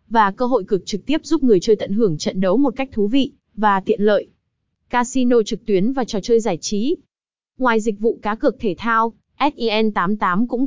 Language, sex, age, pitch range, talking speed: Vietnamese, female, 20-39, 200-255 Hz, 210 wpm